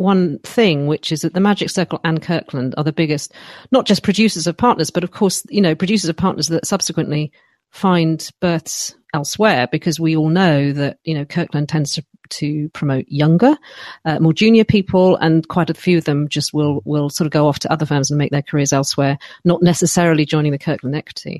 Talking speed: 210 wpm